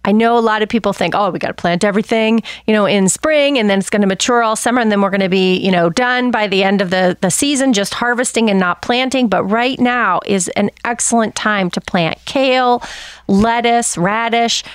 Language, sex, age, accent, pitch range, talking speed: English, female, 30-49, American, 210-260 Hz, 235 wpm